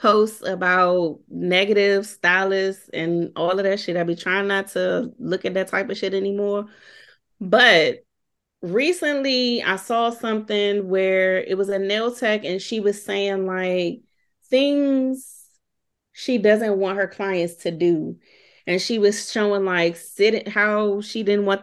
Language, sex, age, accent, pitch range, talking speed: English, female, 30-49, American, 195-250 Hz, 155 wpm